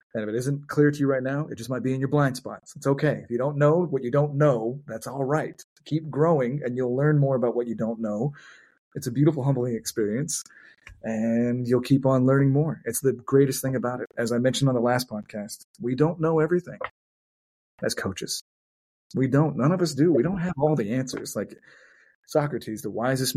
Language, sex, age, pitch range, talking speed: English, male, 30-49, 115-140 Hz, 225 wpm